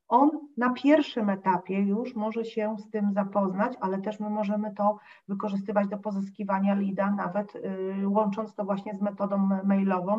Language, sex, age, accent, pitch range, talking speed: Polish, female, 40-59, native, 190-230 Hz, 160 wpm